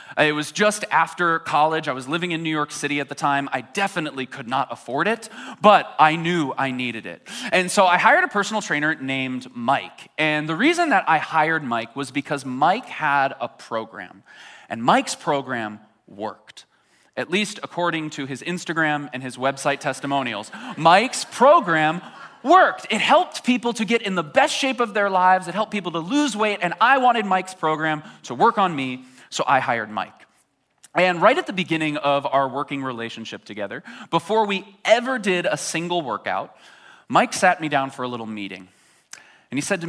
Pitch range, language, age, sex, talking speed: 135-200 Hz, English, 20-39, male, 190 wpm